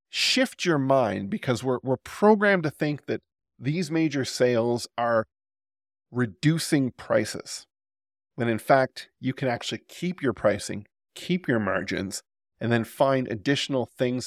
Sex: male